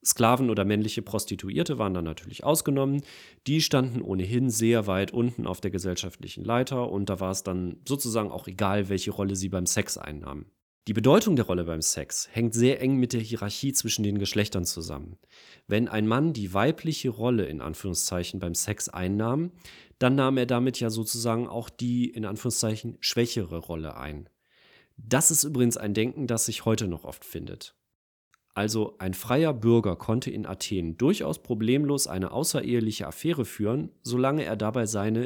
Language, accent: German, German